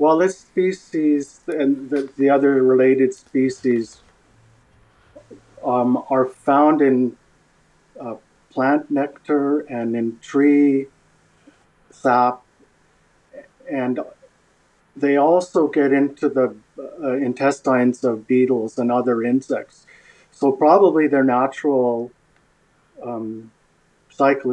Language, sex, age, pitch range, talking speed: English, male, 50-69, 120-145 Hz, 95 wpm